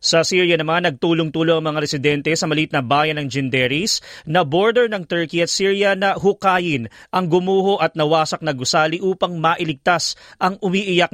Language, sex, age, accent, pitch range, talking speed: English, male, 40-59, Filipino, 110-165 Hz, 165 wpm